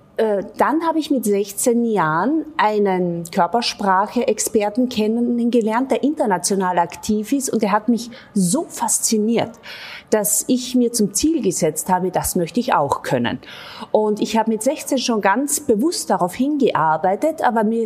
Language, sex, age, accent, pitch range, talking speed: German, female, 30-49, German, 185-235 Hz, 145 wpm